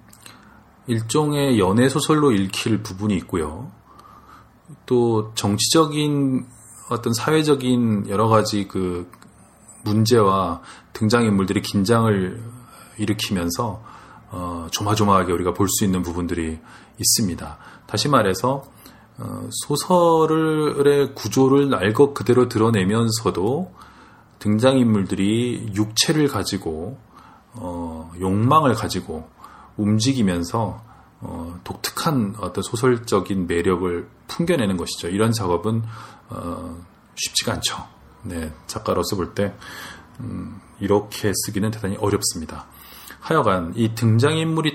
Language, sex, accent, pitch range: Korean, male, native, 95-125 Hz